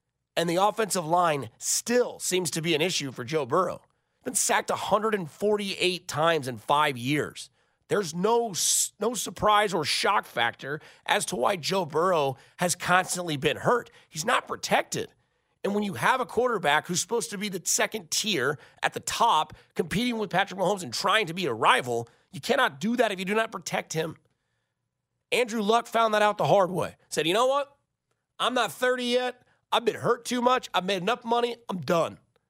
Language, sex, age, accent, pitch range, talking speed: English, male, 30-49, American, 160-225 Hz, 190 wpm